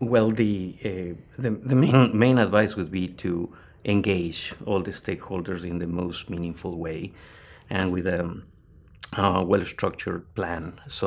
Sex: male